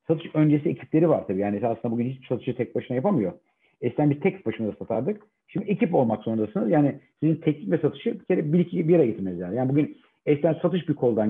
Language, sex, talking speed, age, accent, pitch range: Turkish, male, 200 wpm, 50-69, native, 130-185 Hz